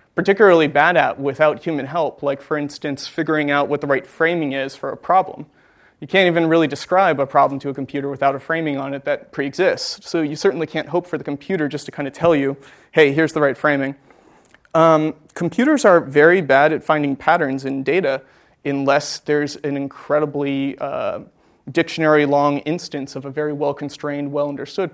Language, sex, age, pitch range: English, male, 30-49, 140-165 Hz